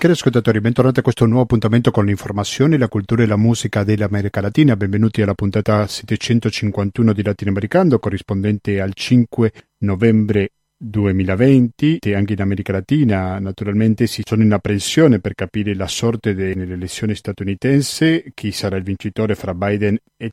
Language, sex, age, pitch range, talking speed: Italian, male, 40-59, 100-120 Hz, 150 wpm